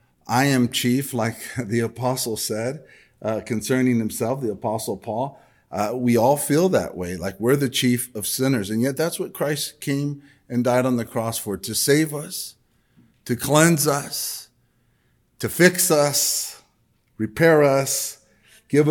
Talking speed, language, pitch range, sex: 155 wpm, English, 115-140 Hz, male